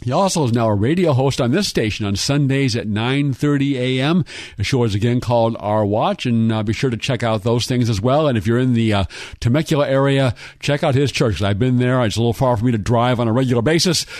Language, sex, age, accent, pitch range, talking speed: English, male, 50-69, American, 105-130 Hz, 255 wpm